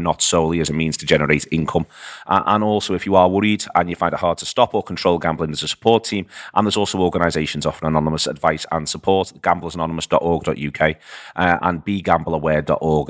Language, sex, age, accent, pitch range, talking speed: English, male, 30-49, British, 80-90 Hz, 190 wpm